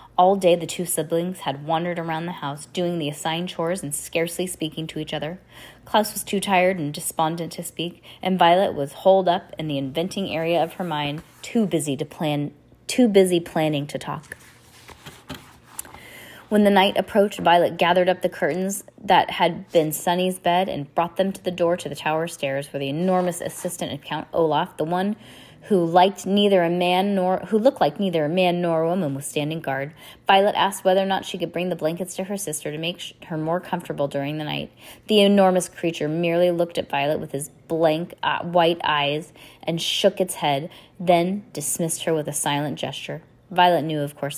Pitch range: 150-190 Hz